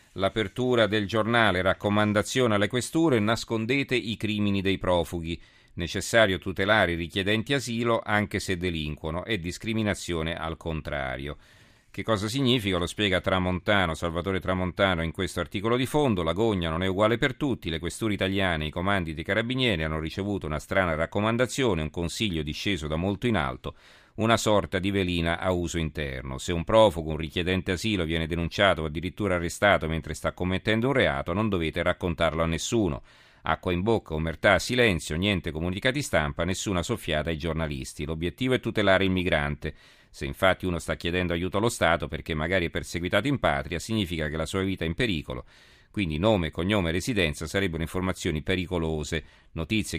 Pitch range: 80-105 Hz